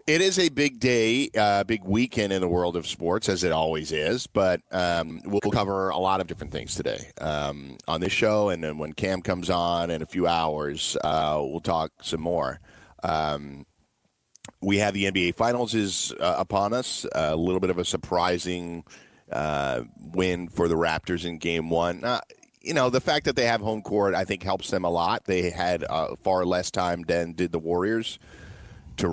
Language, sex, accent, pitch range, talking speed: English, male, American, 85-100 Hz, 200 wpm